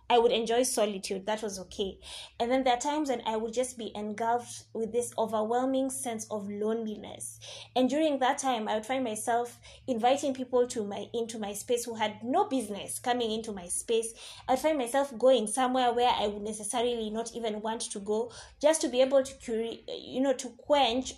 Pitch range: 215-260 Hz